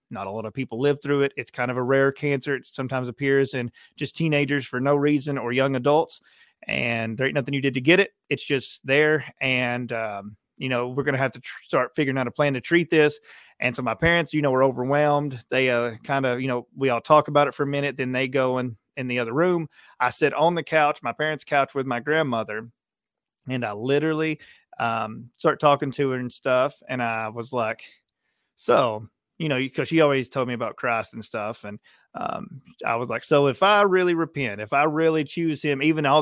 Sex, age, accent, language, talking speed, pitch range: male, 30-49, American, English, 230 wpm, 125-150 Hz